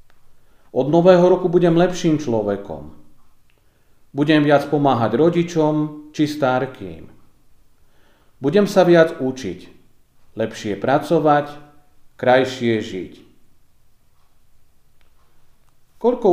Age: 40-59